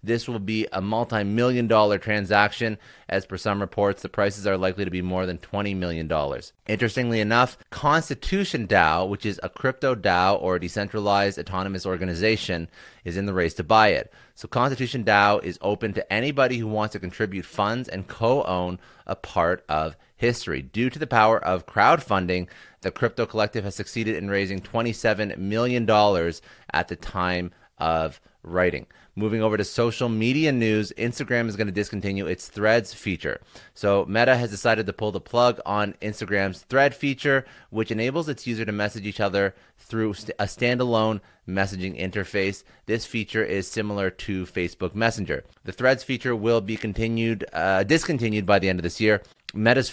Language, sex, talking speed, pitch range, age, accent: English, male, 165 wpm, 95-115 Hz, 30-49, American